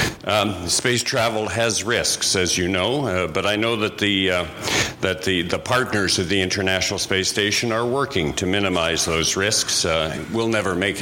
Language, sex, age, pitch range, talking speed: English, male, 50-69, 90-110 Hz, 185 wpm